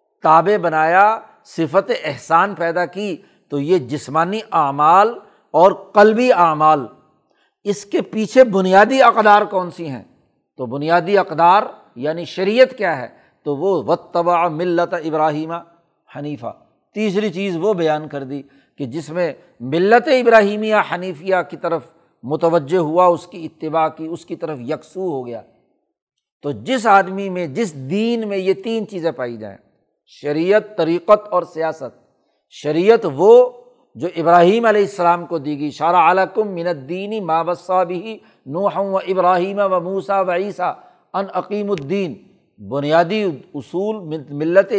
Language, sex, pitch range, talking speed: Urdu, male, 165-205 Hz, 135 wpm